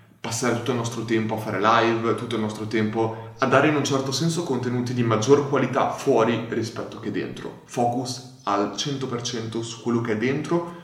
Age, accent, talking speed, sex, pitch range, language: 20-39, native, 190 wpm, male, 105-125 Hz, Italian